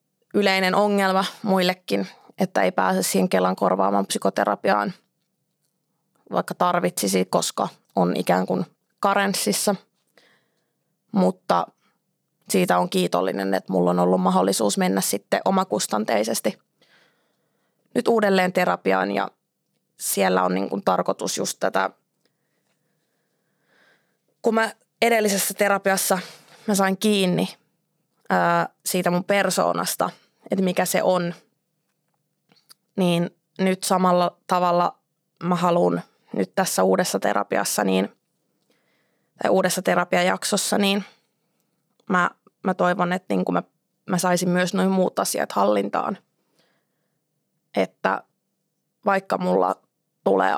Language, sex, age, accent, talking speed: Finnish, female, 20-39, native, 100 wpm